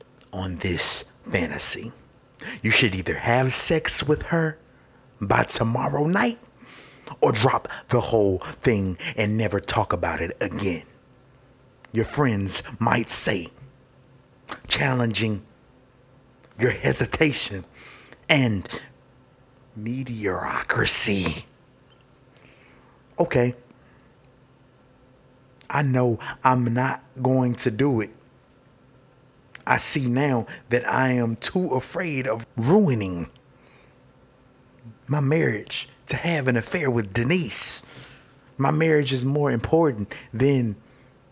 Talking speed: 95 wpm